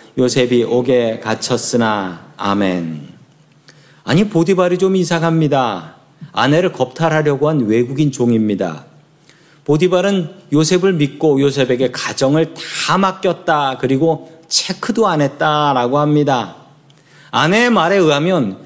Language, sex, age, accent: Korean, male, 40-59, native